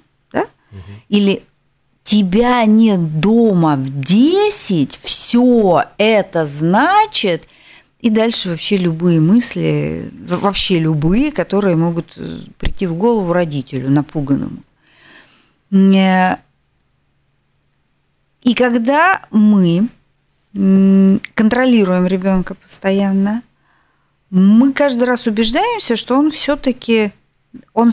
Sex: female